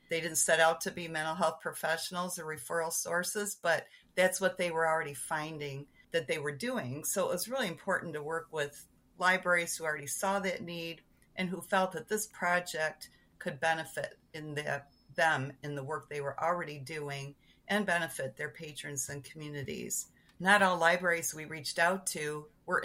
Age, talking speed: 50-69, 180 wpm